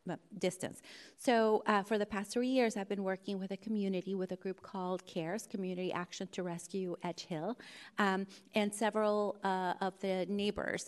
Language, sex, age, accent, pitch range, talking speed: English, female, 30-49, American, 180-215 Hz, 175 wpm